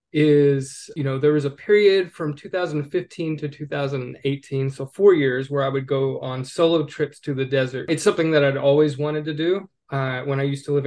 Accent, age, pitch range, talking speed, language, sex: American, 20-39, 135-155 Hz, 210 wpm, English, male